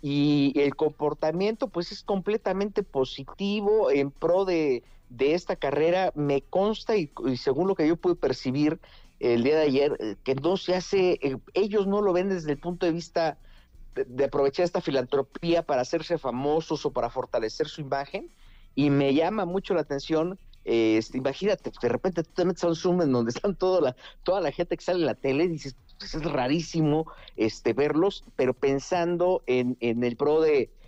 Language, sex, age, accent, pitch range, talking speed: Spanish, male, 50-69, Mexican, 125-175 Hz, 185 wpm